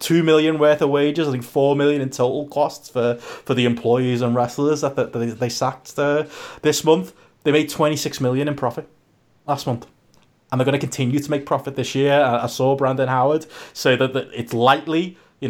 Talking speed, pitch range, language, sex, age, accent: 205 wpm, 120-155 Hz, English, male, 20-39, British